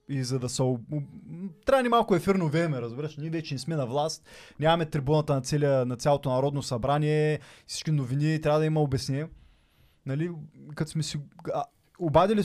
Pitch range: 115-155 Hz